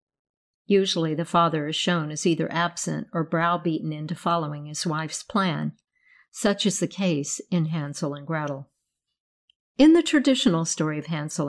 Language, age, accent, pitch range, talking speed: English, 50-69, American, 160-215 Hz, 150 wpm